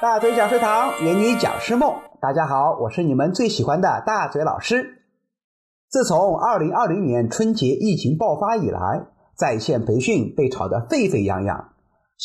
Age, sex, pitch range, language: 30-49, male, 195-275 Hz, Chinese